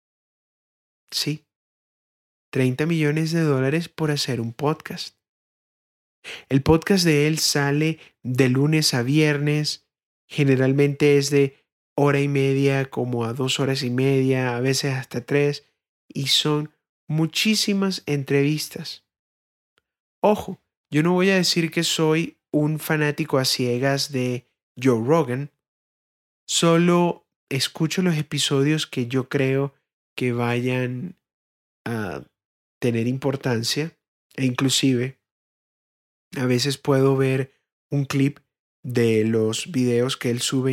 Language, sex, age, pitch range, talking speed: Spanish, male, 30-49, 125-155 Hz, 115 wpm